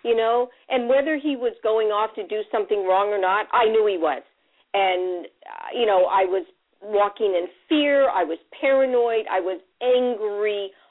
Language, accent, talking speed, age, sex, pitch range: English, American, 175 wpm, 50-69, female, 185-245 Hz